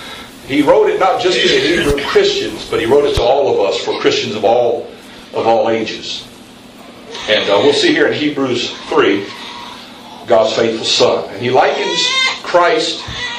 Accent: American